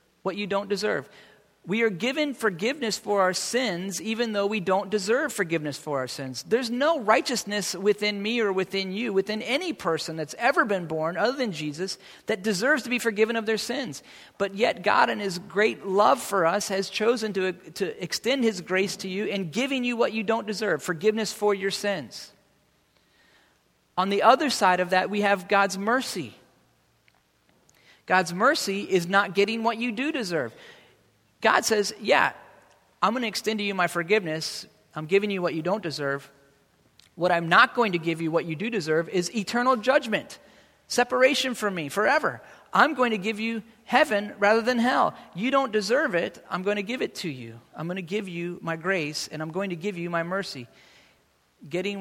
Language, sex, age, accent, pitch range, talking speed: English, male, 40-59, American, 175-220 Hz, 190 wpm